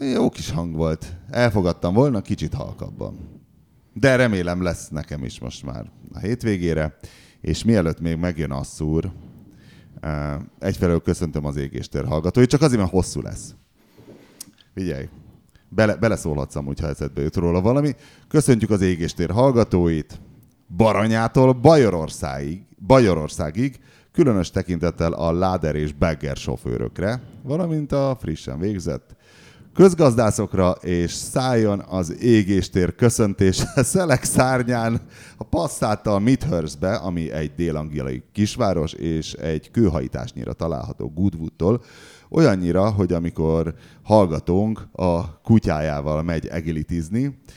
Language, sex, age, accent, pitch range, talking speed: English, male, 30-49, Finnish, 80-115 Hz, 105 wpm